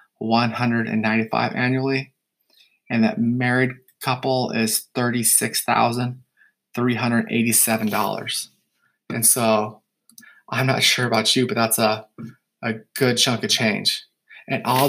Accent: American